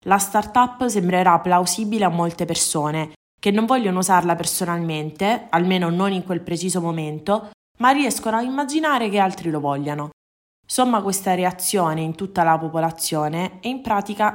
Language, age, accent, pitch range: Italian, 20-39, native, 165-200 Hz